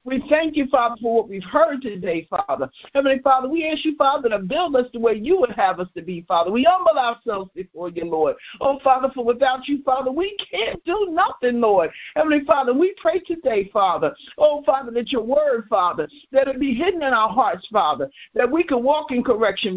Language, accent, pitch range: English, American, 210-285 Hz